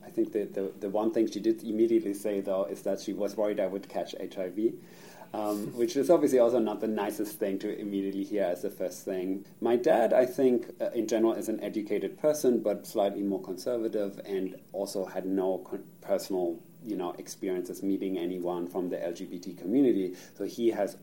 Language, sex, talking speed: English, male, 200 wpm